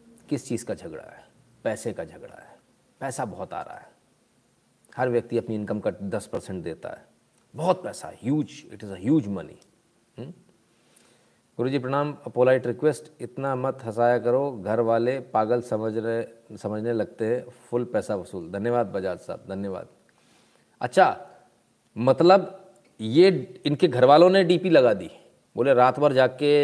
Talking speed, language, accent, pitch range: 155 wpm, Hindi, native, 110-150 Hz